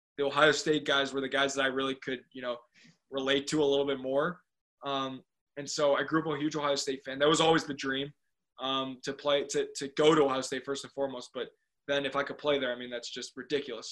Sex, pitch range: male, 130-150 Hz